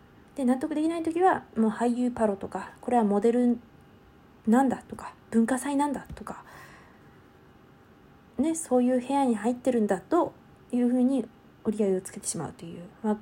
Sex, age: female, 20-39